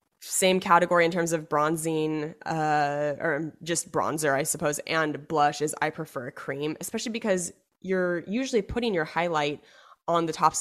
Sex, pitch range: female, 155-195 Hz